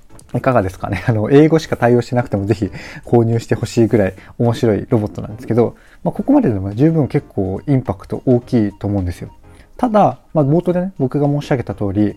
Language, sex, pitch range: Japanese, male, 105-155 Hz